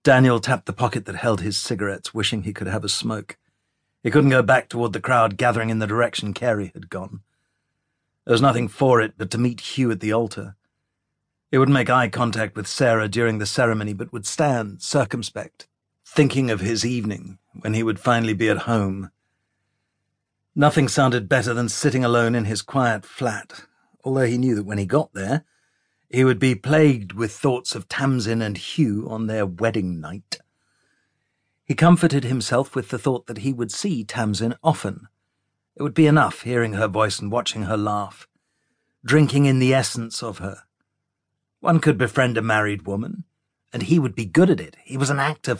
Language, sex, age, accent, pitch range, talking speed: English, male, 50-69, British, 105-135 Hz, 190 wpm